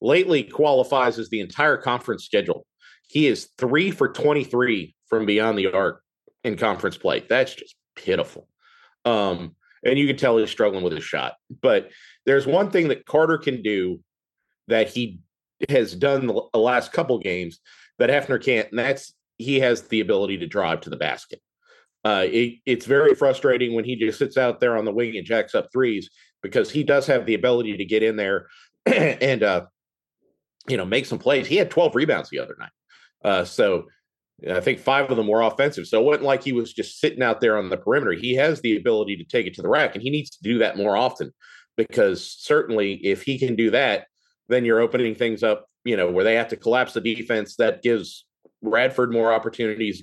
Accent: American